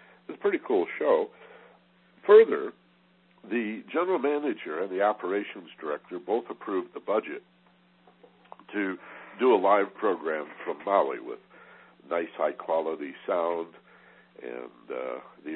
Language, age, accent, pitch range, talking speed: English, 60-79, American, 350-430 Hz, 120 wpm